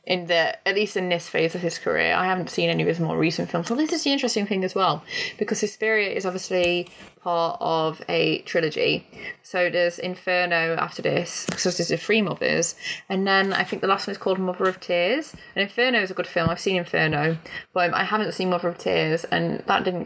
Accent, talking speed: British, 235 wpm